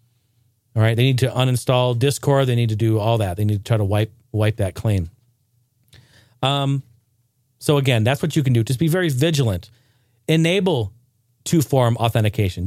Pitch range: 115-140 Hz